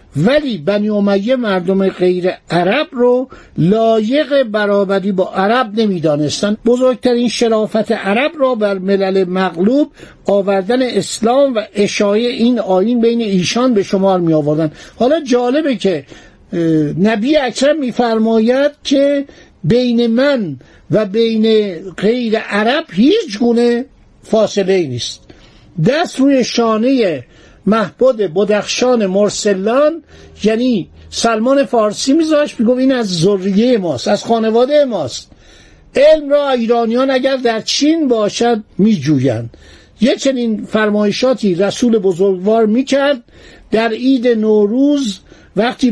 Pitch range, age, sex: 200-255 Hz, 60-79, male